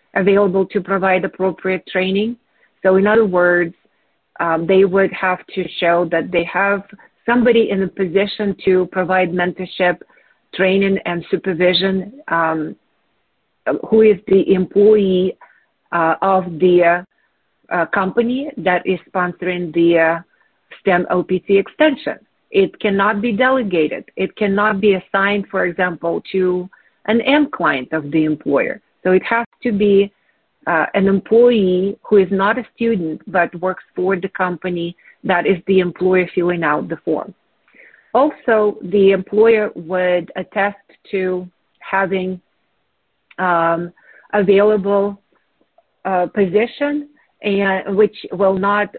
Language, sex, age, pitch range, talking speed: English, female, 40-59, 180-205 Hz, 130 wpm